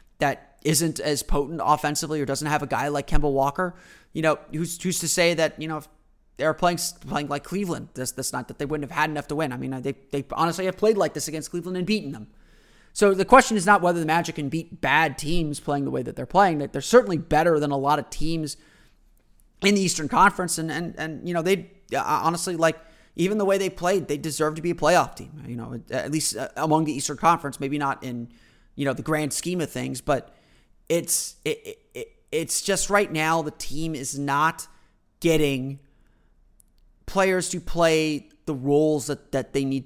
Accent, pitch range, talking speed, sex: American, 140-170 Hz, 215 wpm, male